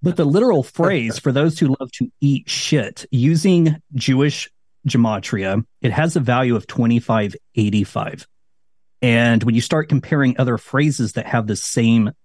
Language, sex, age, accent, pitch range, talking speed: English, male, 40-59, American, 105-135 Hz, 150 wpm